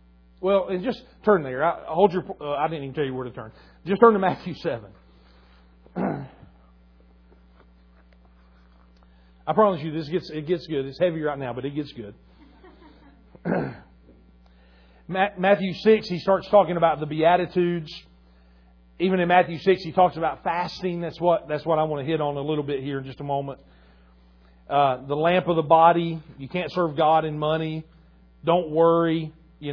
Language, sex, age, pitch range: English, male, 40-59, 120-170 Hz